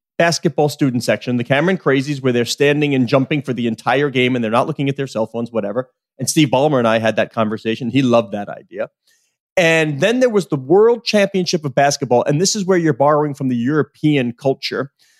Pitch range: 135-190 Hz